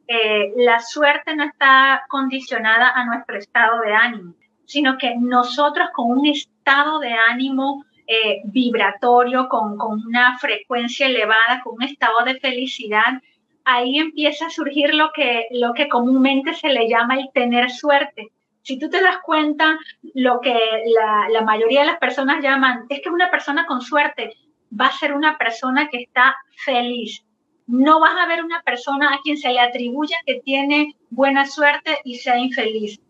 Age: 30-49